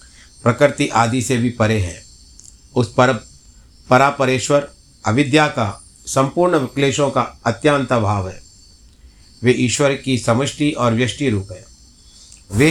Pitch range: 100-135 Hz